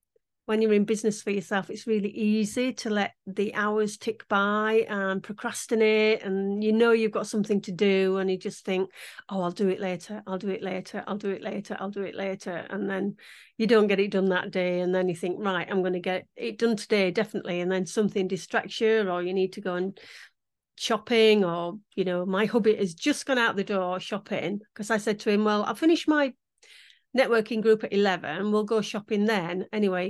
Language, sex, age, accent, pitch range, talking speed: English, female, 40-59, British, 190-220 Hz, 220 wpm